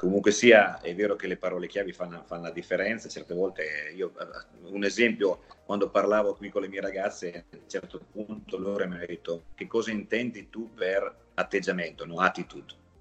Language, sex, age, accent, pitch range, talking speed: Italian, male, 30-49, native, 95-120 Hz, 185 wpm